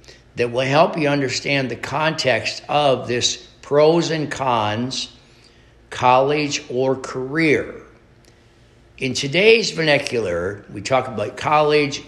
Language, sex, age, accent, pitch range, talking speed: English, male, 60-79, American, 115-145 Hz, 110 wpm